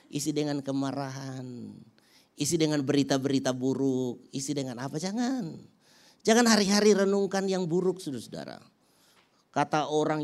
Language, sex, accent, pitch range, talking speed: Indonesian, male, native, 180-245 Hz, 115 wpm